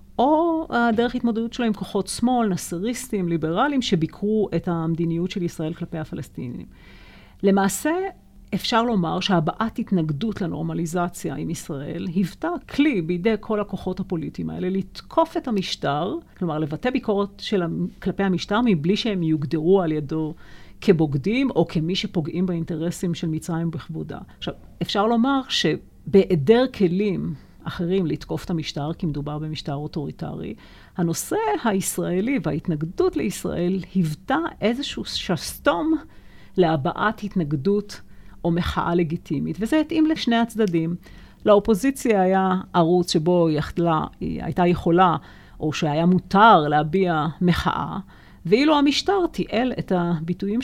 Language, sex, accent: Hebrew, female, native